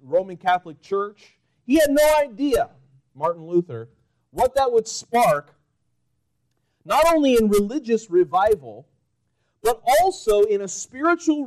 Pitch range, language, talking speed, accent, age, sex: 175-265 Hz, English, 120 wpm, American, 40-59, male